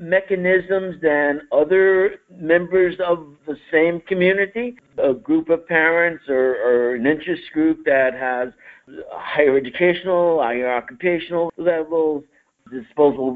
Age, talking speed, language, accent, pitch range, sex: 60-79, 110 wpm, English, American, 130-165 Hz, male